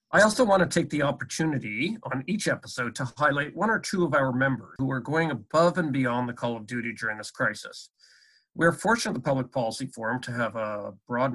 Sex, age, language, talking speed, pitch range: male, 50-69, English, 210 wpm, 120-145 Hz